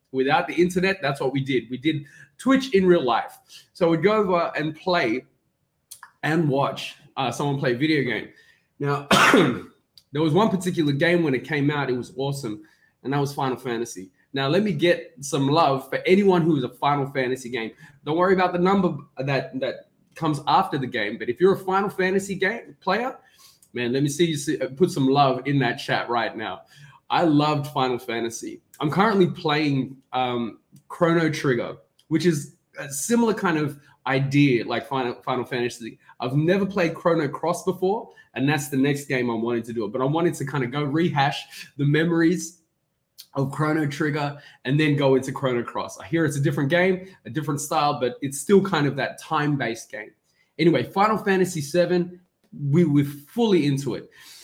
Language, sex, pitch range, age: English, male, 135-175 Hz, 20-39